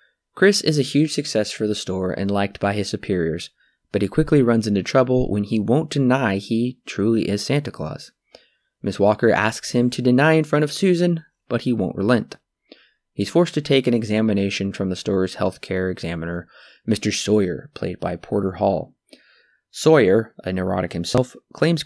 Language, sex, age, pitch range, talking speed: English, male, 20-39, 100-135 Hz, 180 wpm